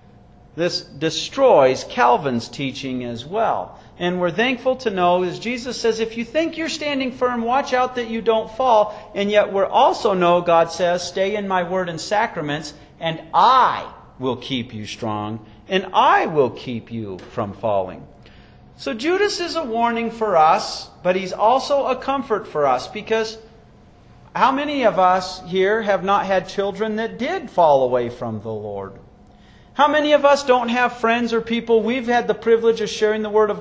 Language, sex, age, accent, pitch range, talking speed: English, male, 40-59, American, 160-230 Hz, 180 wpm